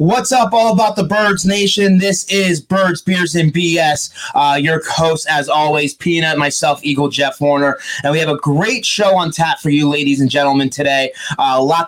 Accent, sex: American, male